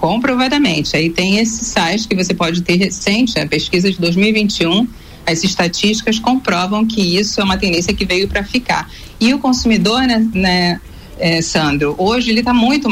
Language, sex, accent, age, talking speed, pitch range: Portuguese, female, Brazilian, 40-59, 170 wpm, 185-245 Hz